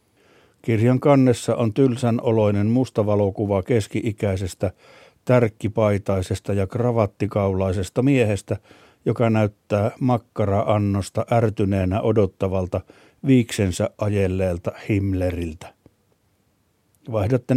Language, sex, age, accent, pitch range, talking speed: Finnish, male, 60-79, native, 100-120 Hz, 70 wpm